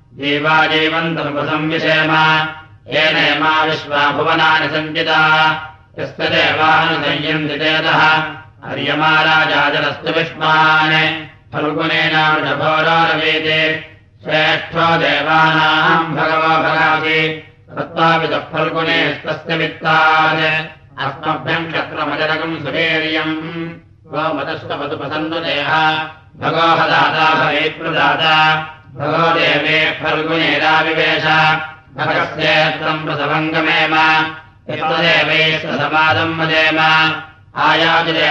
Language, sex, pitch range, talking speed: Russian, male, 155-160 Hz, 50 wpm